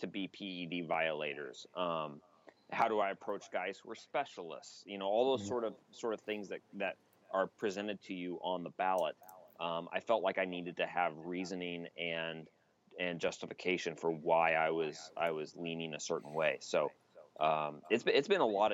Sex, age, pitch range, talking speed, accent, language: male, 30-49, 85-100 Hz, 190 wpm, American, English